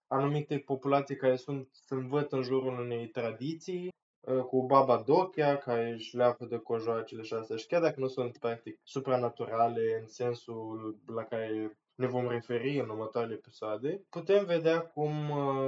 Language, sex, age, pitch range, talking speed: Romanian, male, 20-39, 125-150 Hz, 150 wpm